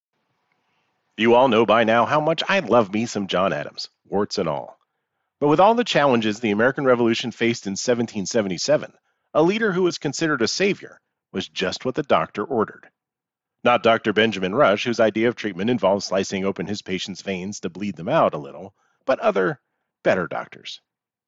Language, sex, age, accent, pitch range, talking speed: English, male, 40-59, American, 110-150 Hz, 180 wpm